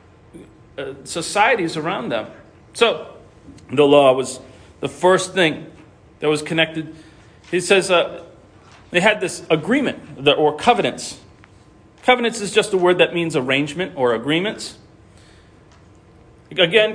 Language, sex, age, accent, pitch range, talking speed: English, male, 40-59, American, 155-230 Hz, 120 wpm